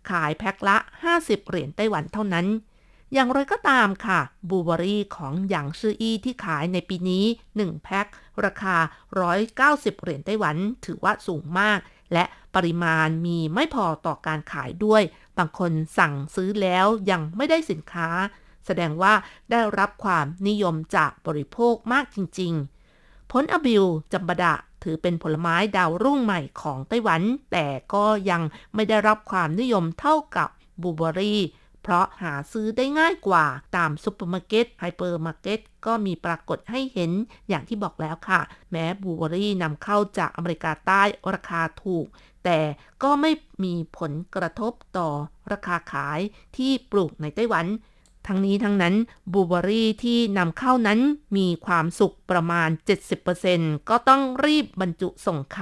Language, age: Thai, 50-69